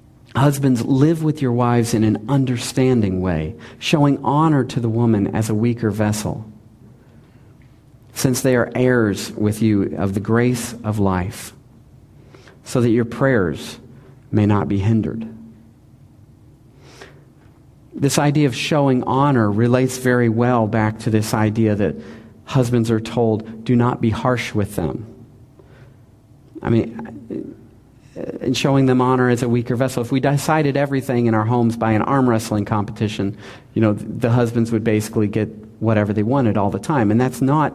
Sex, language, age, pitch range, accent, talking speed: male, English, 40-59, 110-130 Hz, American, 155 wpm